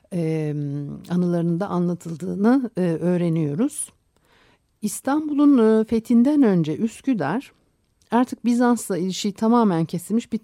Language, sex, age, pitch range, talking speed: Turkish, female, 60-79, 150-200 Hz, 75 wpm